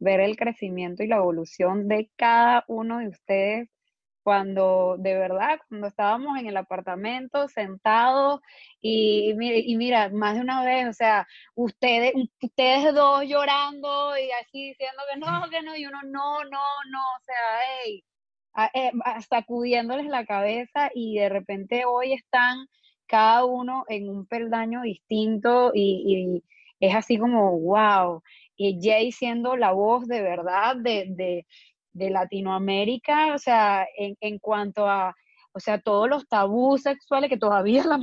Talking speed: 150 wpm